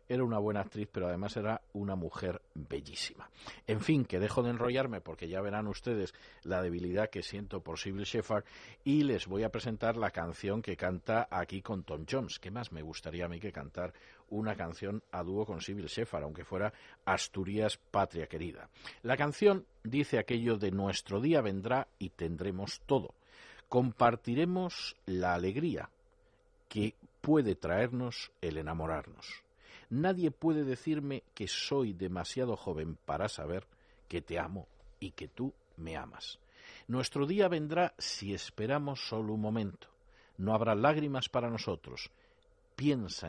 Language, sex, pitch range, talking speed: Spanish, male, 90-130 Hz, 150 wpm